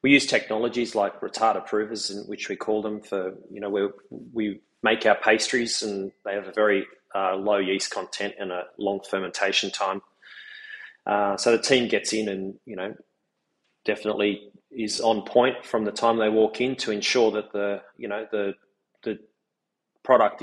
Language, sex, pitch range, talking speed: English, male, 100-115 Hz, 175 wpm